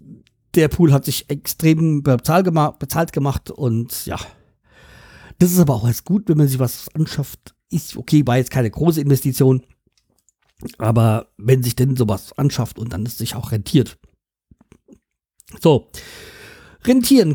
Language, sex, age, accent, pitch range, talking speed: German, male, 50-69, German, 125-160 Hz, 140 wpm